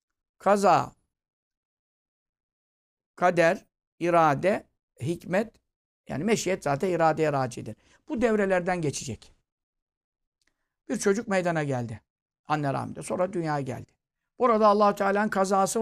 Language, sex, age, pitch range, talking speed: Turkish, male, 60-79, 140-175 Hz, 95 wpm